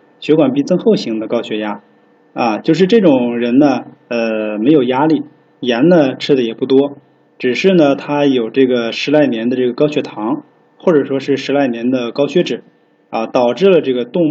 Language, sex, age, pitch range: Chinese, male, 20-39, 115-145 Hz